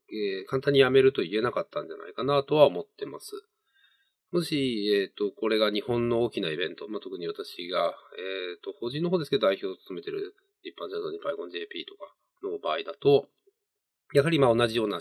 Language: Japanese